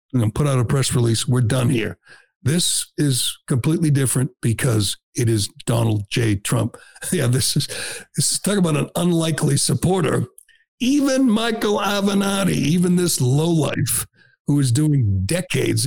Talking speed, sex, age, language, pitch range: 150 wpm, male, 60-79, English, 130-170 Hz